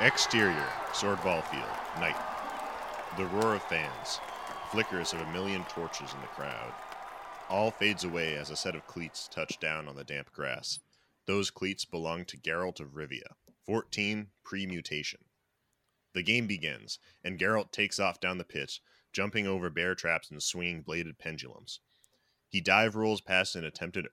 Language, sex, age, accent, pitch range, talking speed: English, male, 30-49, American, 80-100 Hz, 160 wpm